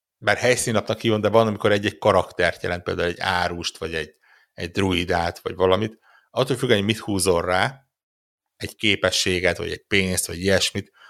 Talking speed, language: 170 wpm, Hungarian